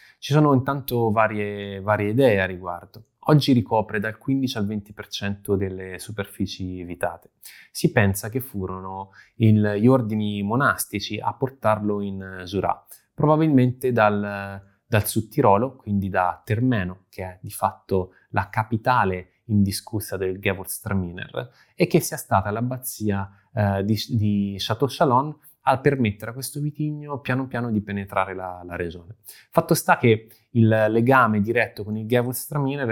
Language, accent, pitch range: Italian, native, 100-125 Hz